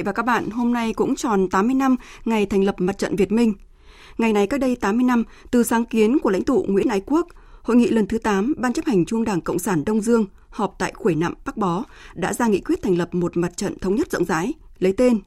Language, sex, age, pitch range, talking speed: Vietnamese, female, 20-39, 180-240 Hz, 260 wpm